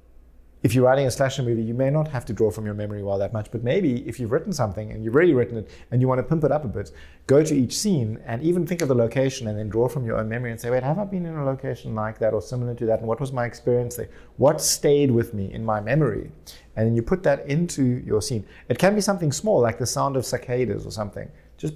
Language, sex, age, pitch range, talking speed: English, male, 30-49, 110-135 Hz, 285 wpm